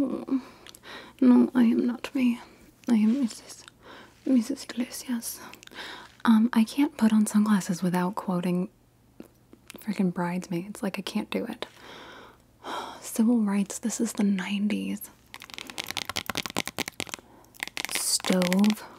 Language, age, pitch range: English, 20-39, 200-245 Hz